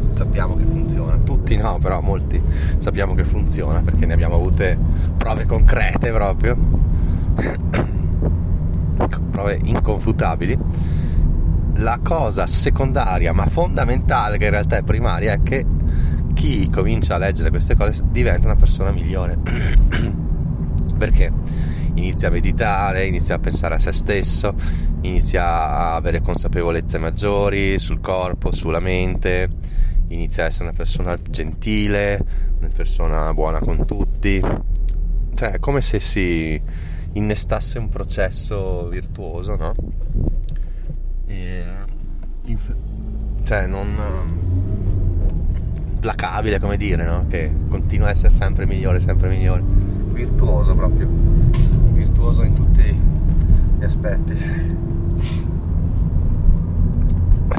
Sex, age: male, 20-39